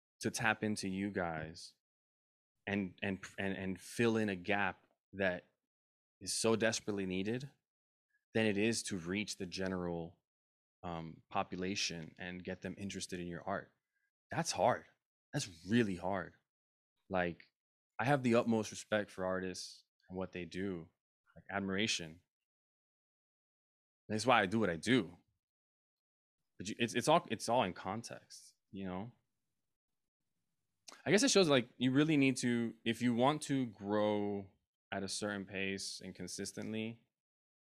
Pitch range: 90-120 Hz